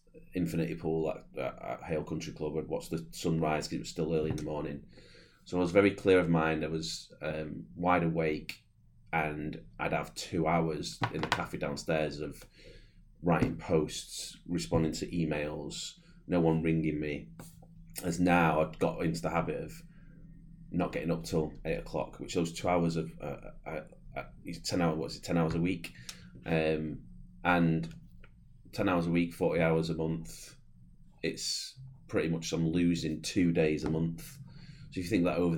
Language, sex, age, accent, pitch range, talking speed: English, male, 30-49, British, 75-90 Hz, 180 wpm